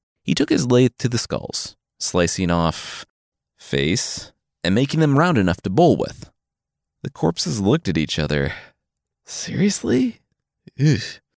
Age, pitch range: 30-49, 90-150 Hz